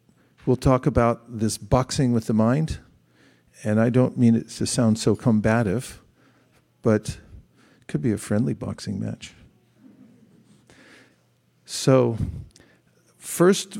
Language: English